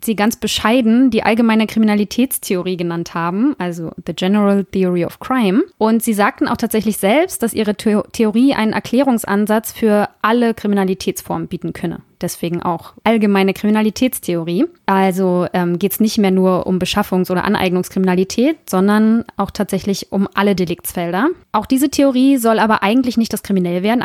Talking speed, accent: 150 wpm, German